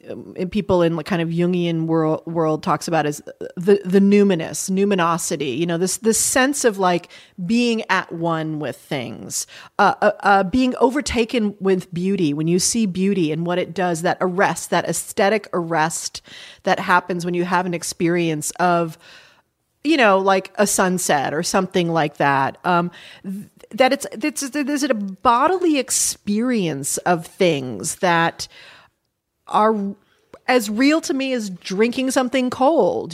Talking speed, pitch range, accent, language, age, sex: 155 wpm, 175-235 Hz, American, English, 40-59, female